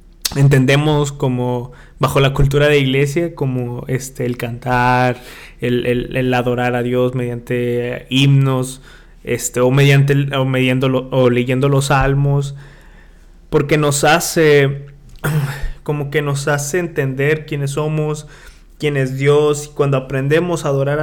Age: 20-39